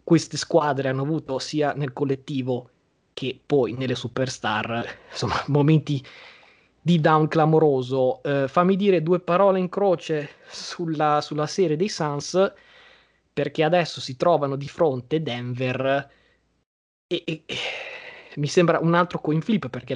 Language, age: Italian, 20-39